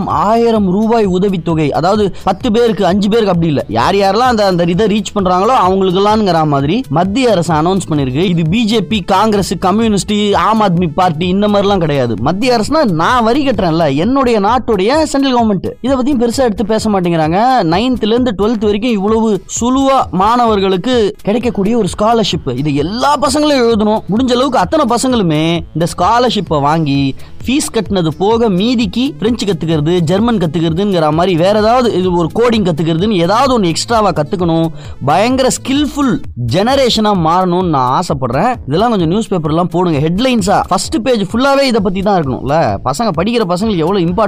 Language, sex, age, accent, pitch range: Tamil, male, 20-39, native, 165-225 Hz